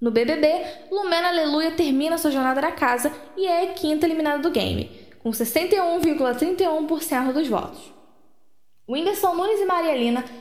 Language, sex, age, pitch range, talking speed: Portuguese, female, 10-29, 250-320 Hz, 140 wpm